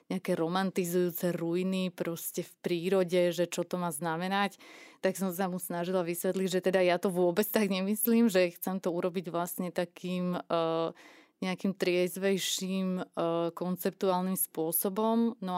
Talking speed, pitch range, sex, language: 145 wpm, 175-195 Hz, female, Slovak